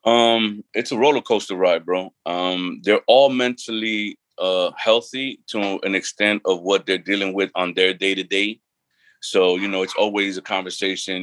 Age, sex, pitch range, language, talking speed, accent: 30-49, male, 95-110 Hz, English, 165 wpm, American